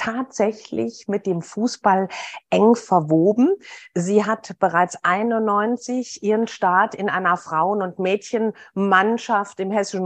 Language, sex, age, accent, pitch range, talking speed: German, female, 50-69, German, 190-250 Hz, 115 wpm